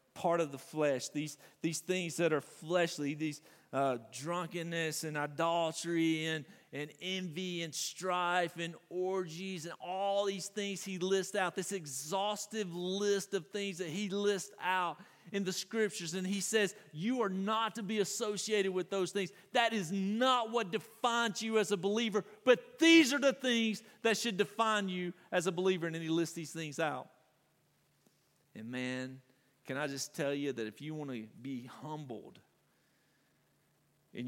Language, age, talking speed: English, 40-59, 165 wpm